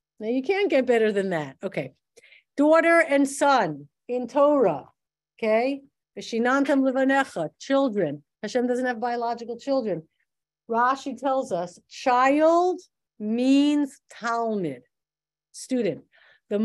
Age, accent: 50-69, American